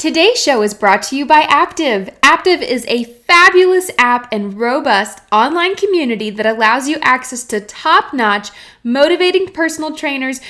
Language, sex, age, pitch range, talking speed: English, female, 20-39, 230-315 Hz, 150 wpm